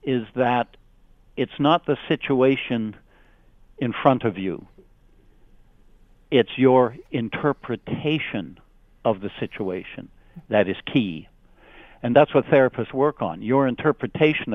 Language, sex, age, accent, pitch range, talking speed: English, male, 60-79, American, 110-135 Hz, 110 wpm